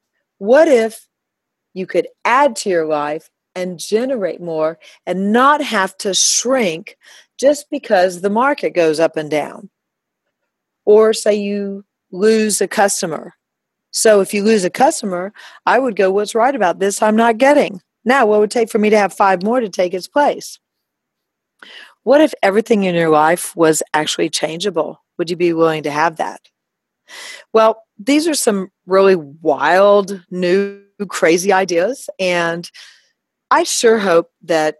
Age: 40-59